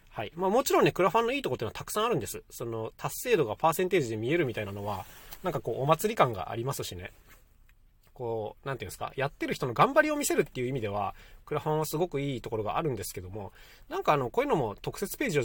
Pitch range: 105-170 Hz